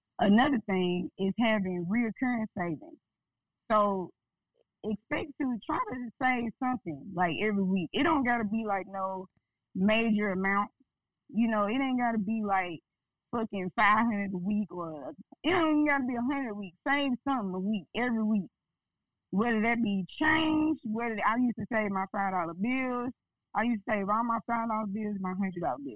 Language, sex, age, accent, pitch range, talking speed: English, female, 20-39, American, 190-240 Hz, 185 wpm